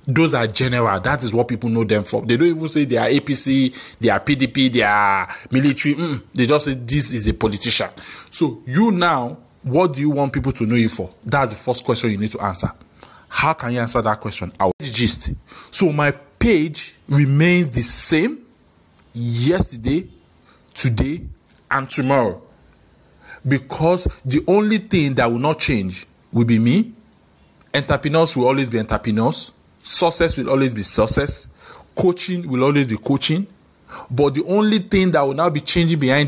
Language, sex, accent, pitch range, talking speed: English, male, Nigerian, 115-145 Hz, 170 wpm